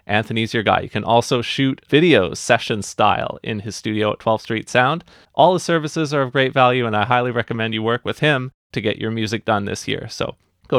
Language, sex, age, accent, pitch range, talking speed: English, male, 30-49, American, 120-150 Hz, 230 wpm